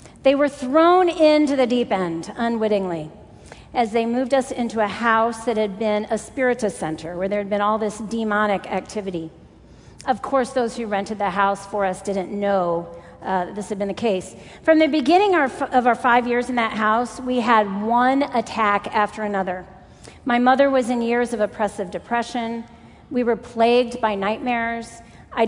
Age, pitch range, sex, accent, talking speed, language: 40-59, 200-245 Hz, female, American, 180 wpm, English